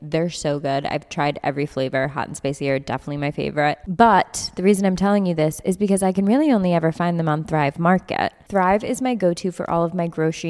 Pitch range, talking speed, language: 165-200 Hz, 240 wpm, English